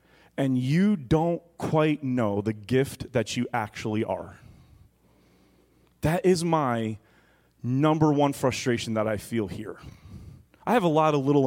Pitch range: 115-155 Hz